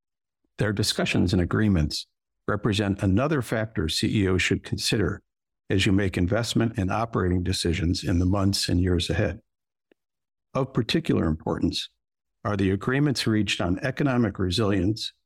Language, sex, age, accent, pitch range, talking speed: English, male, 60-79, American, 90-110 Hz, 130 wpm